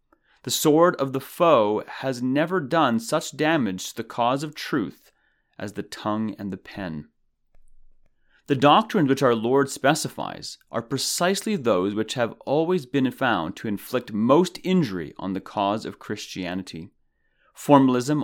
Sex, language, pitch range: male, English, 105-155 Hz